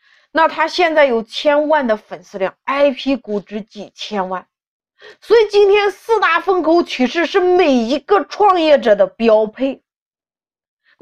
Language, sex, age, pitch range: Chinese, female, 30-49, 235-355 Hz